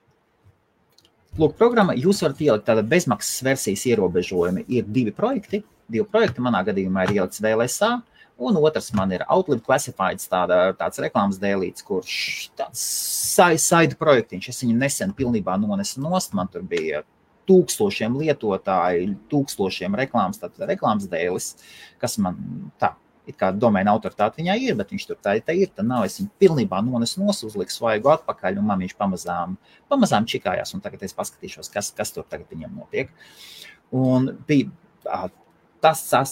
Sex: male